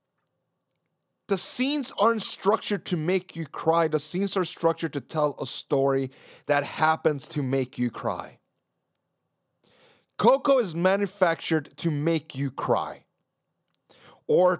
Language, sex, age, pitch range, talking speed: English, male, 30-49, 170-230 Hz, 125 wpm